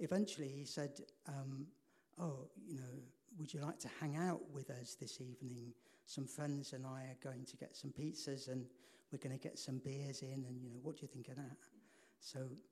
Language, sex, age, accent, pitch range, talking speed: English, male, 60-79, British, 125-150 Hz, 210 wpm